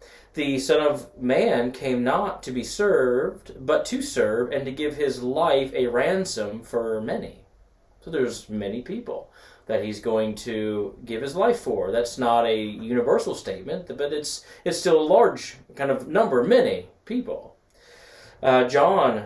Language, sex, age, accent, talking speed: English, male, 30-49, American, 160 wpm